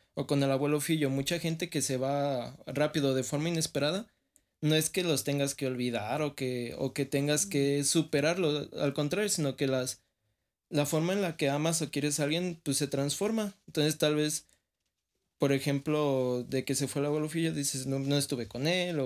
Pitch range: 130-155 Hz